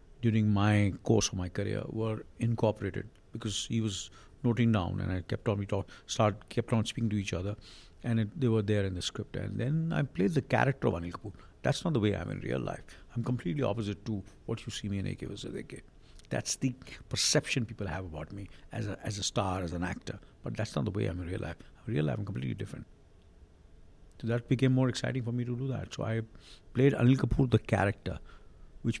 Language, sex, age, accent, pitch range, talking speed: Hindi, male, 60-79, native, 95-125 Hz, 235 wpm